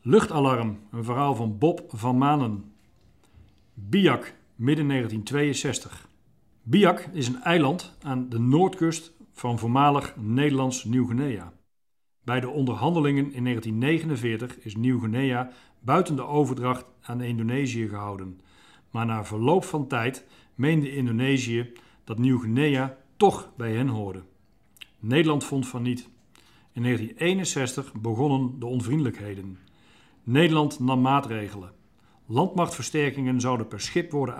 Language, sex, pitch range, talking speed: Dutch, male, 115-145 Hz, 110 wpm